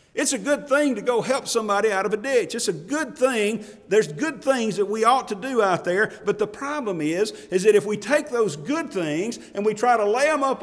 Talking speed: 255 wpm